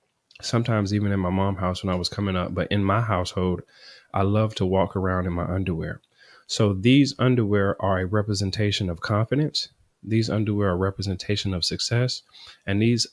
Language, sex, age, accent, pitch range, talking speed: English, male, 30-49, American, 95-115 Hz, 185 wpm